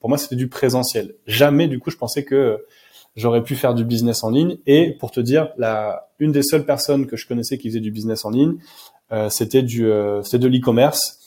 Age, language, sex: 20-39, French, male